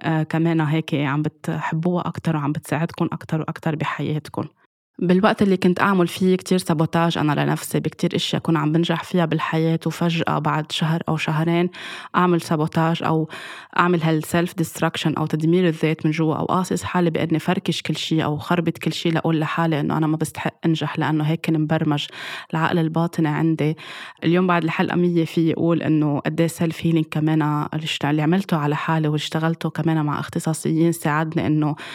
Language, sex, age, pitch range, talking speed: Arabic, female, 20-39, 155-170 Hz, 165 wpm